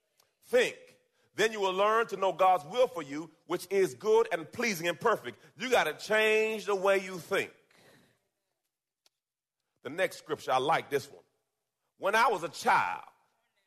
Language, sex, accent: English, male, American